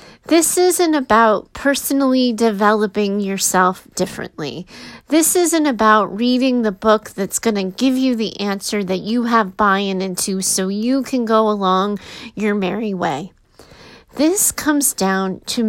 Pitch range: 195-240 Hz